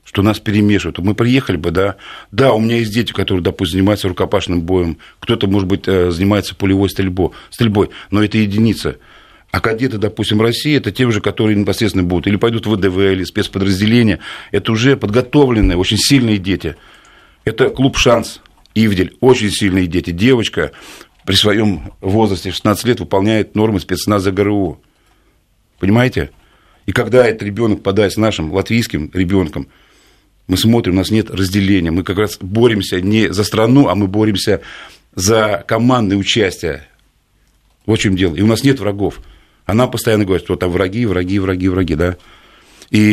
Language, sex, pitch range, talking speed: Russian, male, 95-110 Hz, 160 wpm